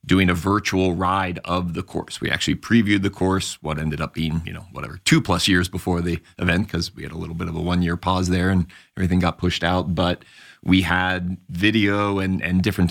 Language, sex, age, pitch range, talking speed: English, male, 30-49, 90-95 Hz, 225 wpm